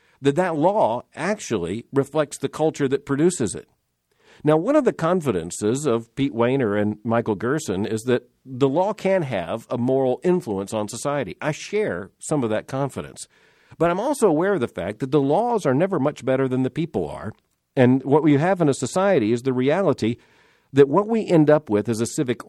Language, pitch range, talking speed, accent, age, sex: English, 120-160 Hz, 200 wpm, American, 50-69, male